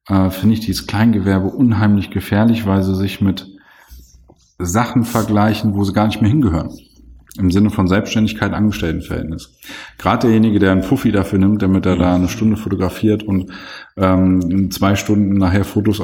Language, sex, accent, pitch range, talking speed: German, male, German, 95-110 Hz, 155 wpm